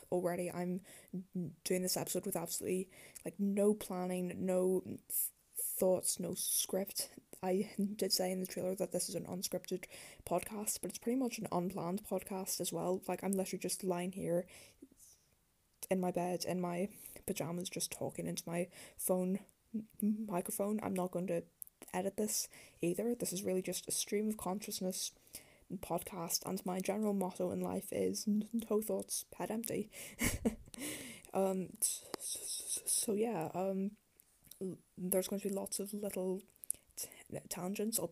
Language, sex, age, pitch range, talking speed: English, female, 10-29, 180-200 Hz, 150 wpm